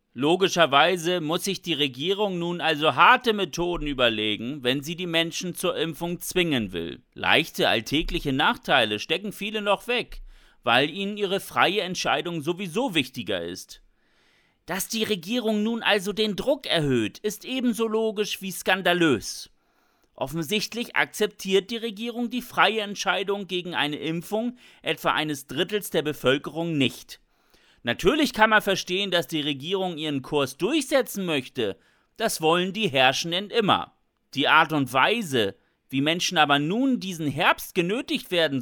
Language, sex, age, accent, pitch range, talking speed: German, male, 40-59, German, 155-215 Hz, 140 wpm